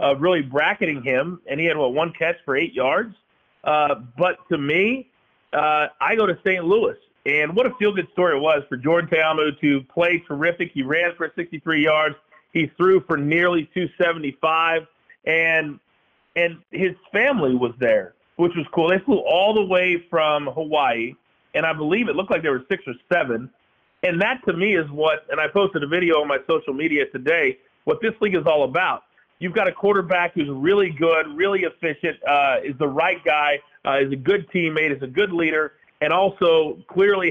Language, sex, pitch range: English, male, 145-180 Hz